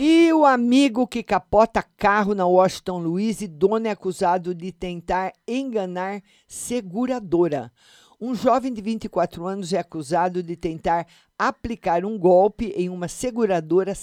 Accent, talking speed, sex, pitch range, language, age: Brazilian, 135 wpm, male, 175-220 Hz, Portuguese, 50-69